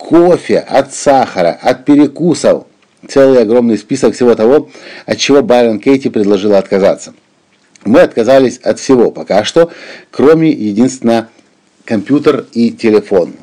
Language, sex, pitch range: Russian, male, 110-135 Hz